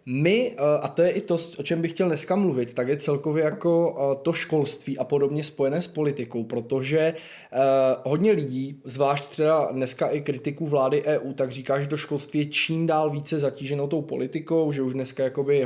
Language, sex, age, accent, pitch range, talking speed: Czech, male, 20-39, native, 130-155 Hz, 190 wpm